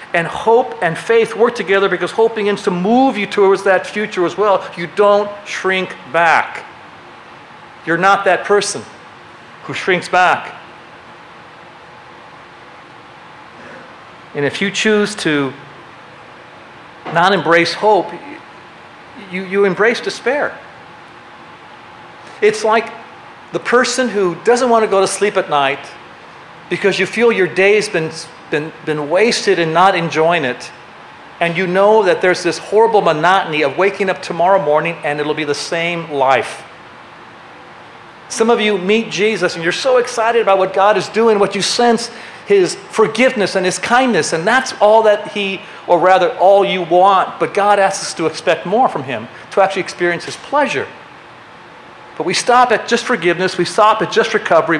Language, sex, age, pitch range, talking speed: English, male, 40-59, 175-220 Hz, 160 wpm